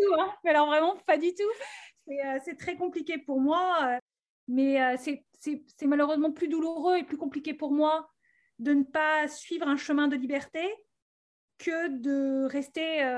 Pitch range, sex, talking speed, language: 275-330 Hz, female, 155 wpm, French